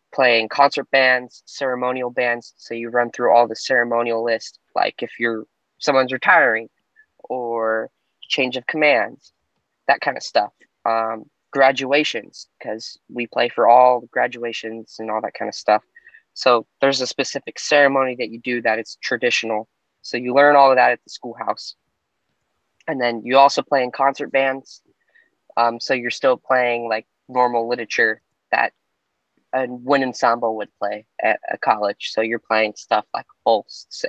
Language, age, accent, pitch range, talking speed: English, 20-39, American, 115-135 Hz, 160 wpm